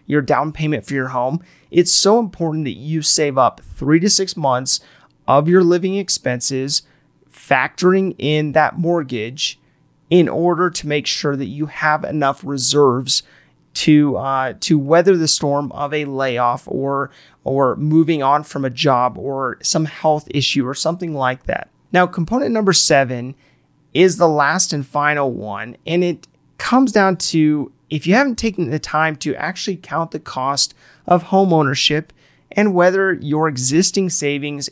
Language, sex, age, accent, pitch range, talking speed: English, male, 30-49, American, 140-175 Hz, 160 wpm